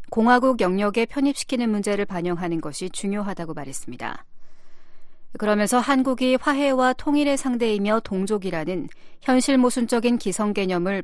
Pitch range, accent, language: 185-240 Hz, native, Korean